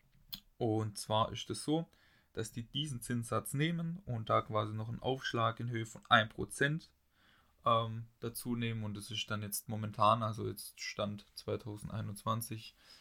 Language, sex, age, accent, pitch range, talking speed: German, male, 10-29, German, 105-115 Hz, 155 wpm